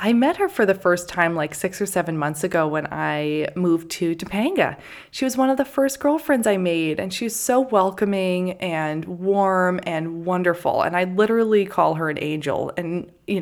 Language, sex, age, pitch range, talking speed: English, female, 20-39, 155-200 Hz, 195 wpm